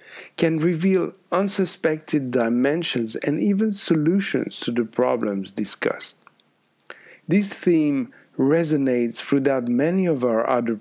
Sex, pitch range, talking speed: male, 125-160 Hz, 105 wpm